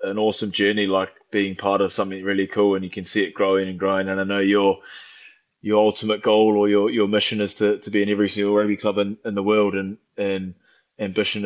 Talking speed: 235 wpm